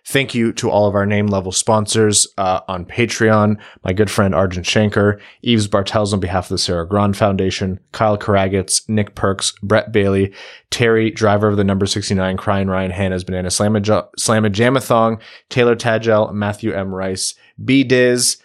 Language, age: English, 20-39